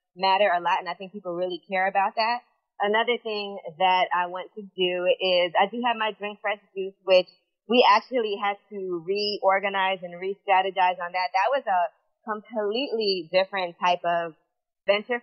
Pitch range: 180-205 Hz